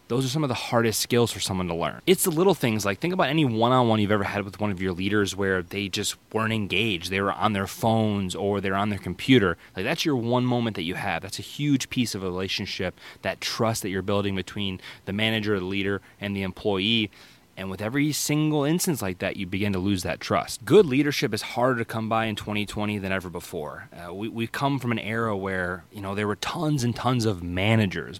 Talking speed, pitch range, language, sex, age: 245 wpm, 100-125 Hz, English, male, 20-39